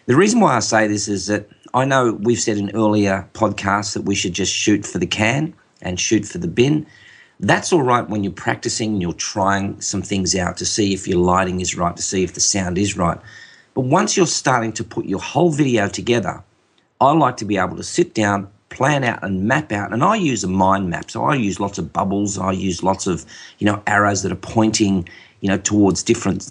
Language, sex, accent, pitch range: English, male, Australian, 100-115 Hz